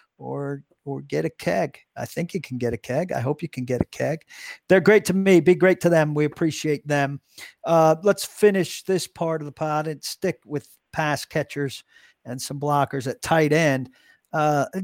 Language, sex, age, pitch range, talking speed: English, male, 50-69, 135-180 Hz, 200 wpm